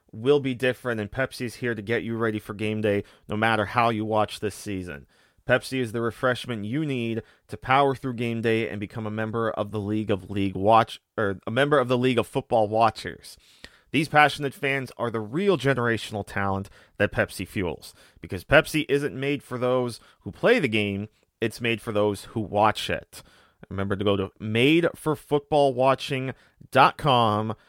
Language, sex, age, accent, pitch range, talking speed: English, male, 30-49, American, 105-135 Hz, 180 wpm